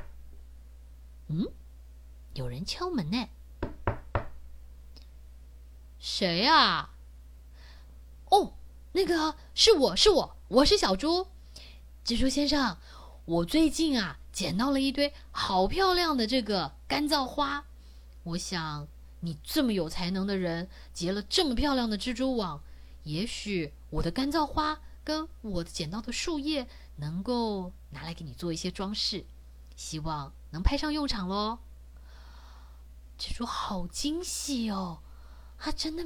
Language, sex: Chinese, female